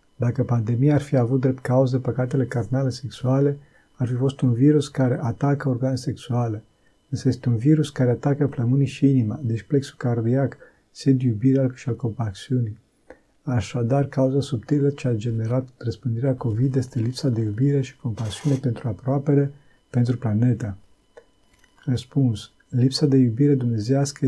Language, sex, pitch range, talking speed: Romanian, male, 120-140 Hz, 145 wpm